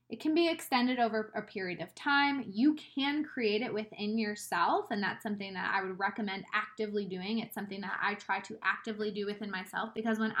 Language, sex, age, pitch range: English, female, 20-39, 205-240 Hz